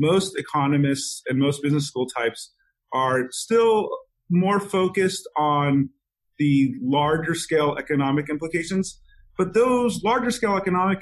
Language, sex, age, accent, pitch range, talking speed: English, male, 30-49, American, 140-180 Hz, 120 wpm